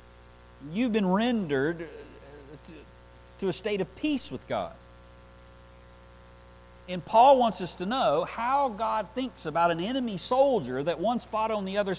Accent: American